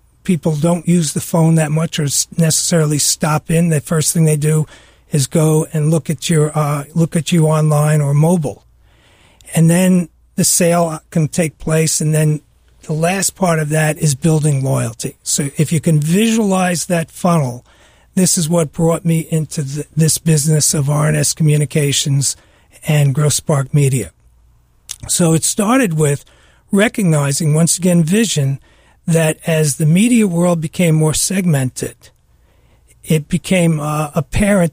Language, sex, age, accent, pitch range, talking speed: English, male, 40-59, American, 145-170 Hz, 155 wpm